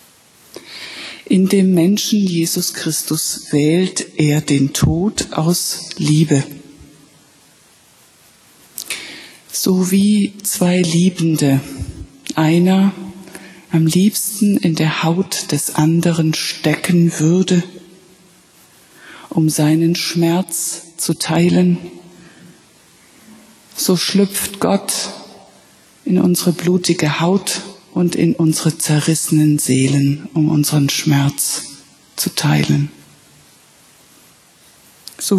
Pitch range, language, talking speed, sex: 155-185 Hz, German, 80 wpm, female